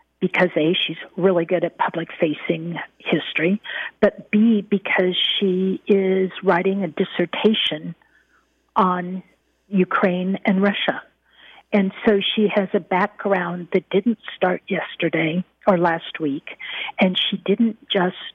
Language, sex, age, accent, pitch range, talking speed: English, female, 50-69, American, 170-205 Hz, 120 wpm